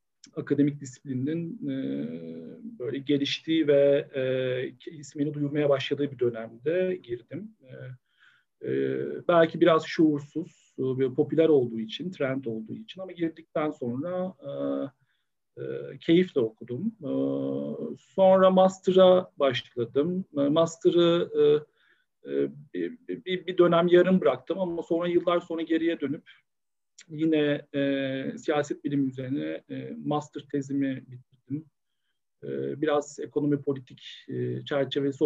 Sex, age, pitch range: male, 40-59, 125-170 Hz